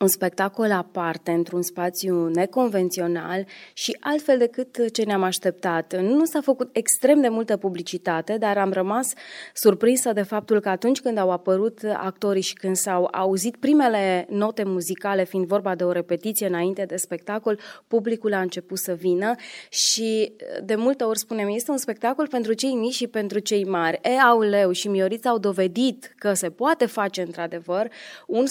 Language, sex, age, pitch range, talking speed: Romanian, female, 20-39, 185-230 Hz, 160 wpm